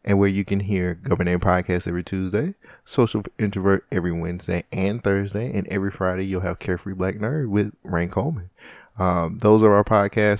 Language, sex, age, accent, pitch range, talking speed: English, male, 20-39, American, 90-110 Hz, 180 wpm